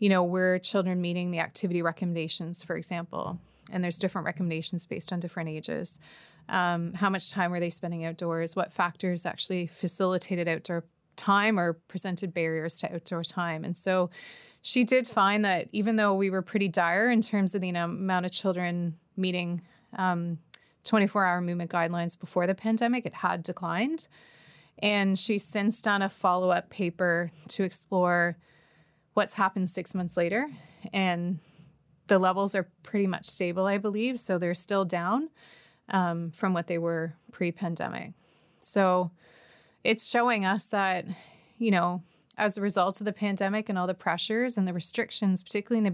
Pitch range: 175-200 Hz